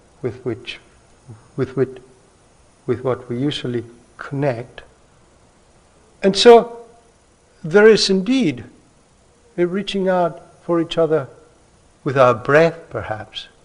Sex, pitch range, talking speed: male, 115-160 Hz, 105 wpm